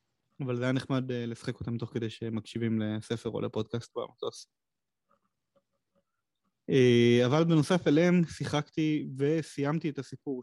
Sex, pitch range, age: male, 120-155 Hz, 20-39